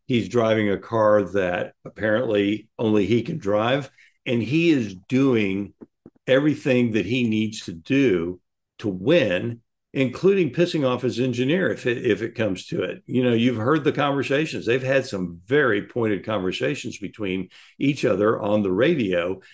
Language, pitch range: English, 105-135 Hz